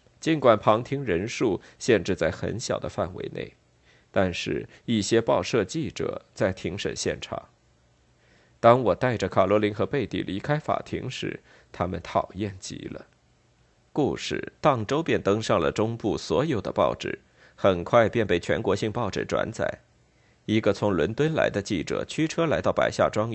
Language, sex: Chinese, male